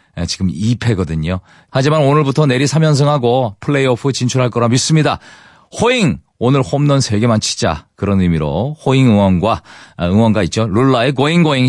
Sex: male